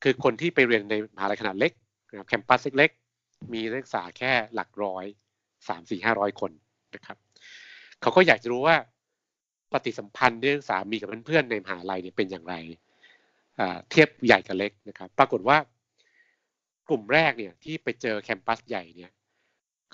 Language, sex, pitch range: Thai, male, 105-135 Hz